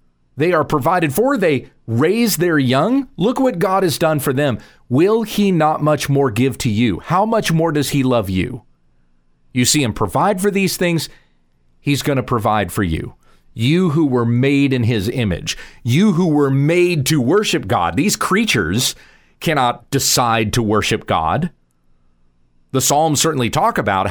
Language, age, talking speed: English, 40-59, 170 wpm